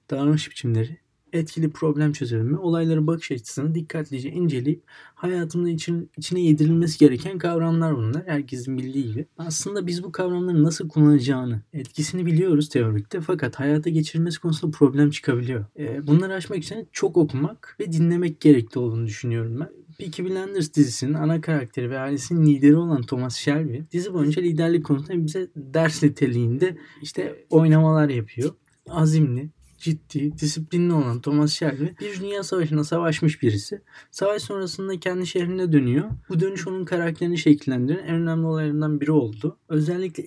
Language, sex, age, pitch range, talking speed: Turkish, male, 30-49, 140-170 Hz, 140 wpm